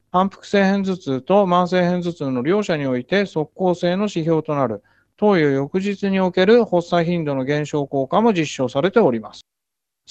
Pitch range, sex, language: 145-195 Hz, male, Japanese